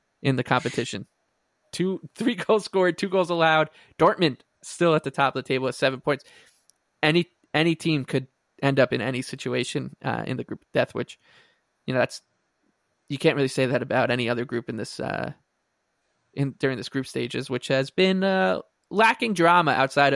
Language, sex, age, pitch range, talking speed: English, male, 20-39, 135-160 Hz, 190 wpm